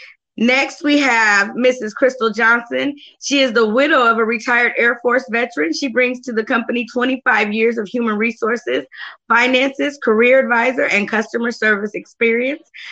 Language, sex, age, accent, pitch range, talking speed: English, female, 20-39, American, 210-245 Hz, 155 wpm